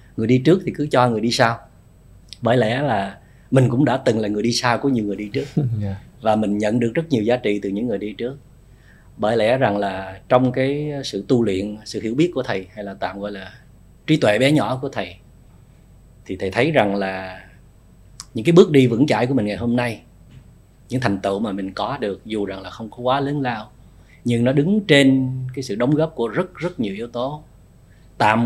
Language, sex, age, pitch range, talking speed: Vietnamese, male, 20-39, 100-135 Hz, 230 wpm